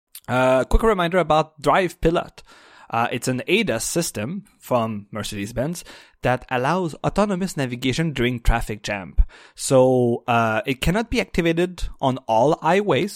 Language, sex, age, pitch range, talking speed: English, male, 30-49, 120-160 Hz, 130 wpm